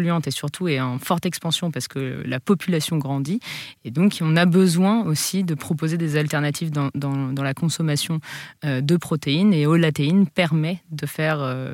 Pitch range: 140-170 Hz